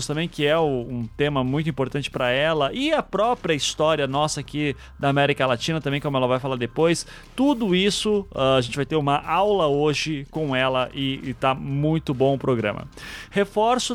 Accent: Brazilian